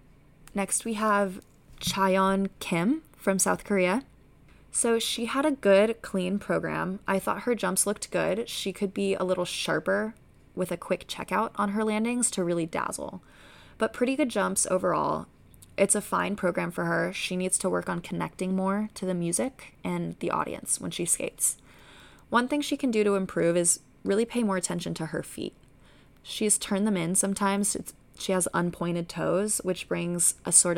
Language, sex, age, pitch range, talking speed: English, female, 20-39, 170-210 Hz, 180 wpm